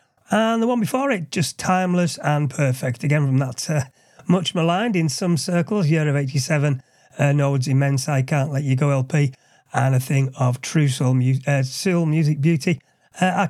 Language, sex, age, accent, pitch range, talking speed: English, male, 40-59, British, 135-180 Hz, 195 wpm